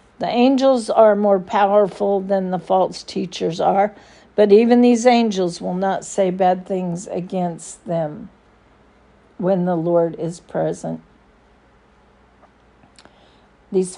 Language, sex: English, female